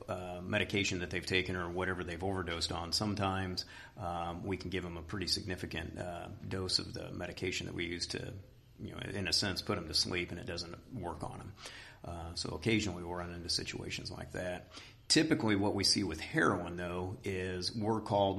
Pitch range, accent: 90-100 Hz, American